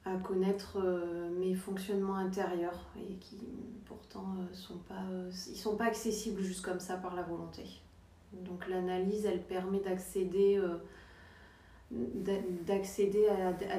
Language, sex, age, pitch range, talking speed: French, female, 30-49, 175-200 Hz, 145 wpm